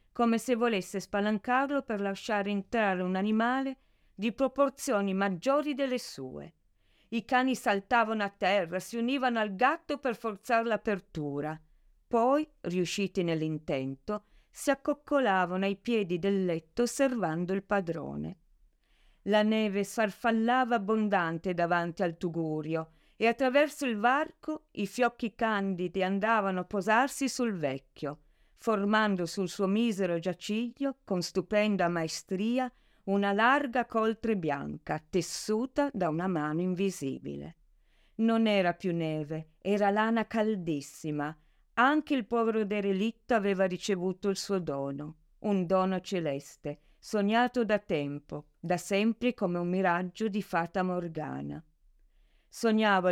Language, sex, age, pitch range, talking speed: Italian, female, 50-69, 175-230 Hz, 120 wpm